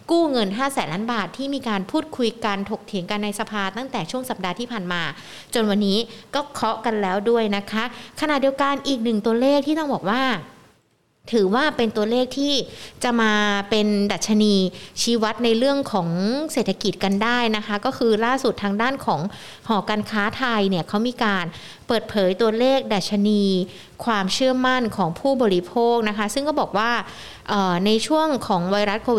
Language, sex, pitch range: Thai, female, 200-250 Hz